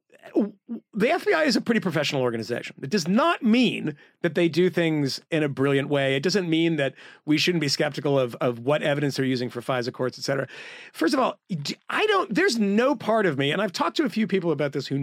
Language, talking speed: English, 230 wpm